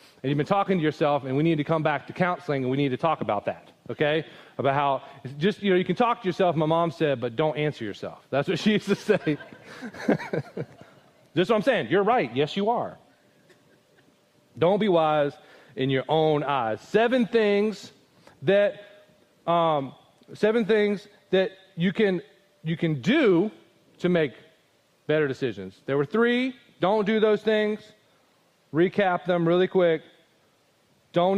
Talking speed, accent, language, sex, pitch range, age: 170 wpm, American, English, male, 140-190 Hz, 30-49